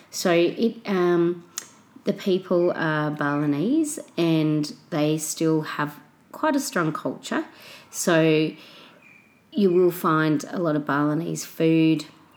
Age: 30-49